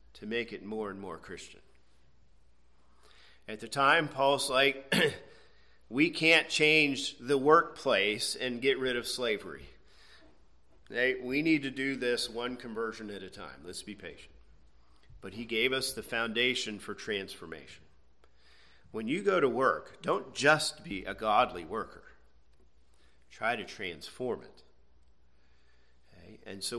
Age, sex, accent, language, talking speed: 40-59, male, American, English, 135 wpm